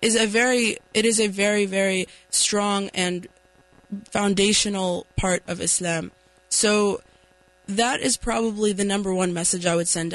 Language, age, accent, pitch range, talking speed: English, 20-39, American, 180-210 Hz, 150 wpm